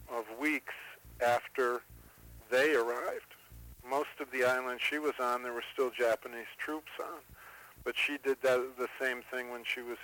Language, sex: English, male